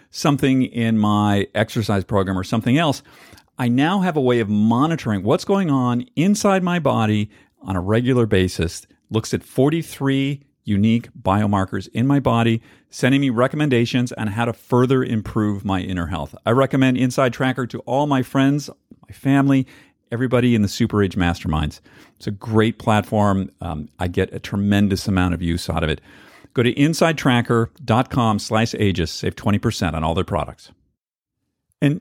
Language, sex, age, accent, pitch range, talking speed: English, male, 50-69, American, 105-145 Hz, 165 wpm